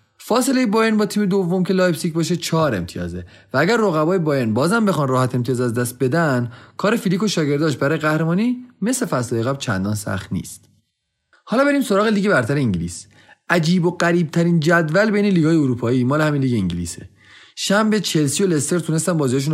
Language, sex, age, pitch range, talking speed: Persian, male, 30-49, 120-185 Hz, 170 wpm